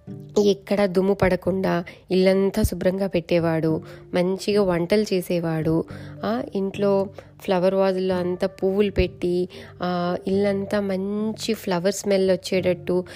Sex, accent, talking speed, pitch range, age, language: female, native, 90 wpm, 180-215 Hz, 20-39, Telugu